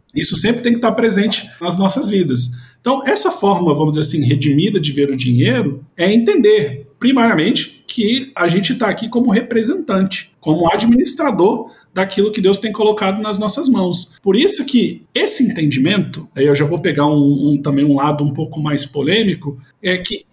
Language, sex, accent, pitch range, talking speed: Portuguese, male, Brazilian, 150-215 Hz, 175 wpm